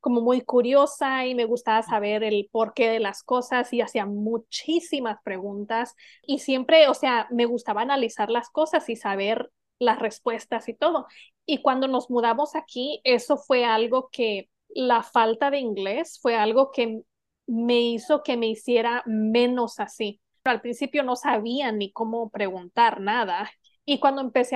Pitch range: 220-270 Hz